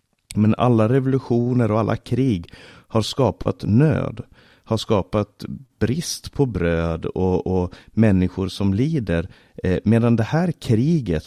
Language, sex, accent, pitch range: Swedish, male, native, 85-110 Hz